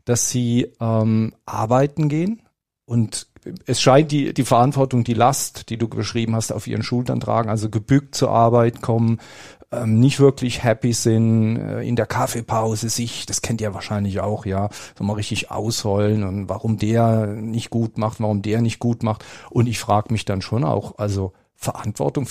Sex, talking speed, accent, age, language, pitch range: male, 180 wpm, German, 40-59, German, 105-125 Hz